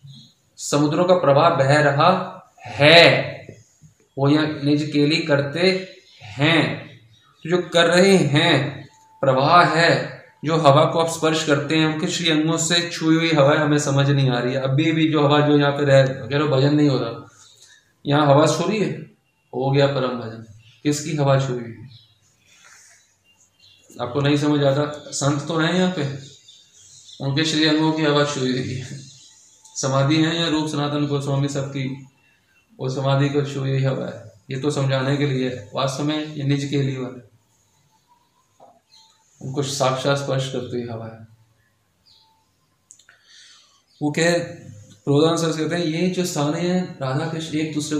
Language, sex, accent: Hindi, male, native